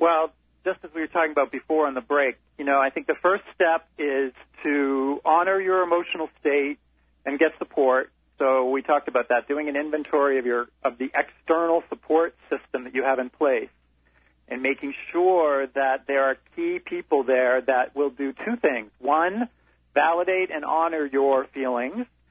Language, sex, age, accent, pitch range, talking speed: English, male, 40-59, American, 135-180 Hz, 180 wpm